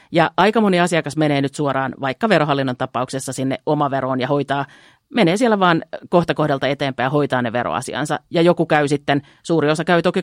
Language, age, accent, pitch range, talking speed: Finnish, 40-59, native, 135-170 Hz, 190 wpm